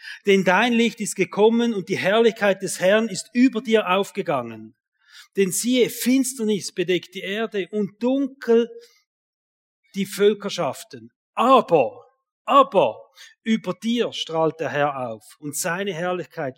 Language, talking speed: German, 125 wpm